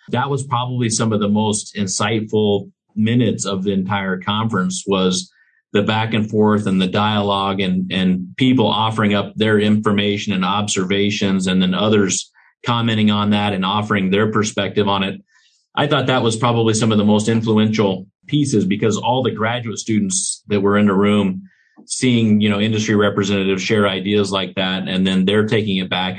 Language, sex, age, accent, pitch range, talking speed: English, male, 40-59, American, 95-110 Hz, 180 wpm